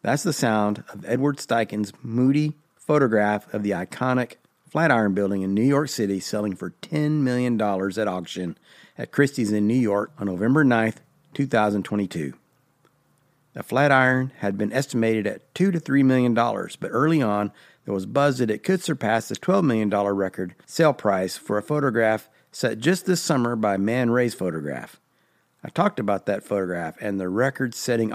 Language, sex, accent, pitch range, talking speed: English, male, American, 100-130 Hz, 165 wpm